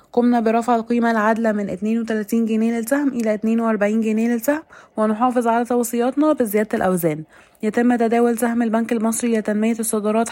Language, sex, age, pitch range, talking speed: Arabic, female, 20-39, 215-235 Hz, 140 wpm